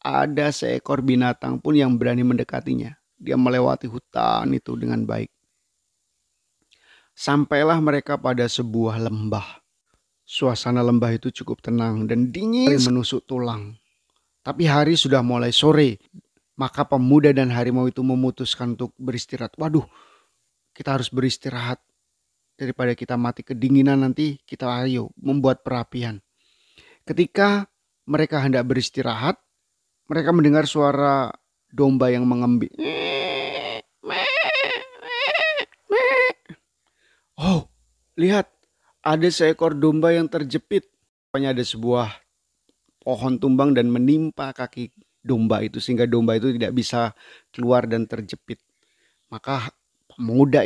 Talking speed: 105 wpm